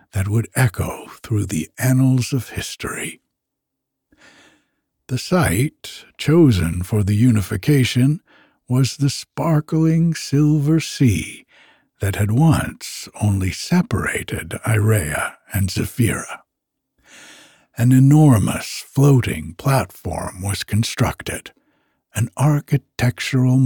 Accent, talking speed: American, 90 wpm